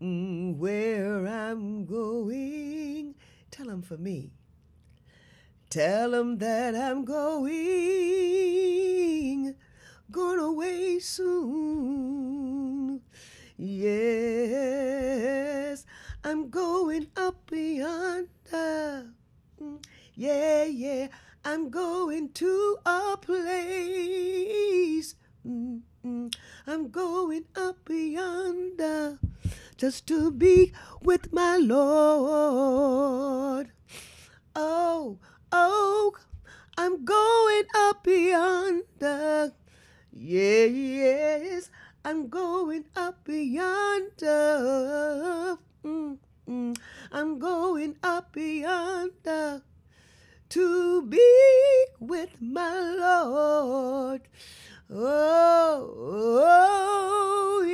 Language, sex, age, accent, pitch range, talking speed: English, female, 30-49, American, 270-360 Hz, 65 wpm